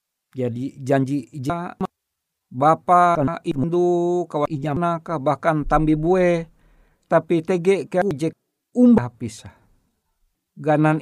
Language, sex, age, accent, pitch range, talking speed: Indonesian, male, 60-79, native, 135-180 Hz, 115 wpm